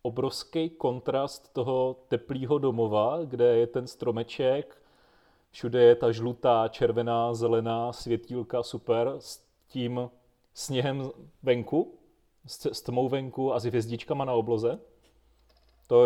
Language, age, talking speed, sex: Czech, 30-49, 110 wpm, male